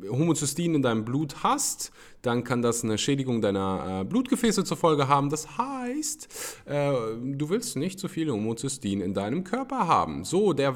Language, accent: German, German